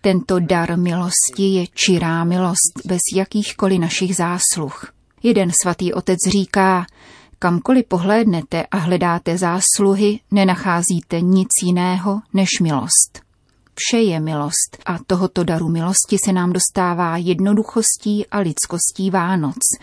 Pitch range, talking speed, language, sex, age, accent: 170-200 Hz, 115 wpm, Czech, female, 30-49, native